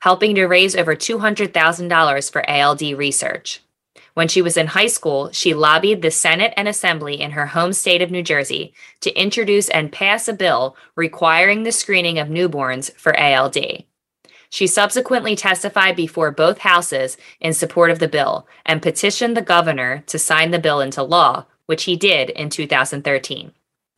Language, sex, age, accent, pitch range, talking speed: English, female, 20-39, American, 150-190 Hz, 165 wpm